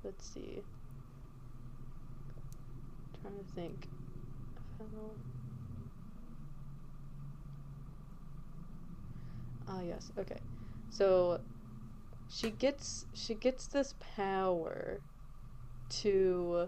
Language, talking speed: English, 65 wpm